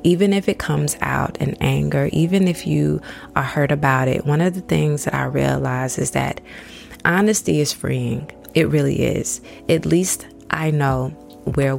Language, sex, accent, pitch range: English, female, American, 115-155 Hz